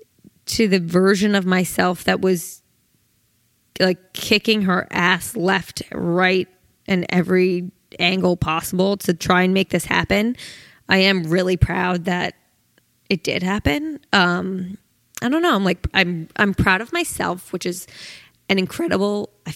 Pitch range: 180-200 Hz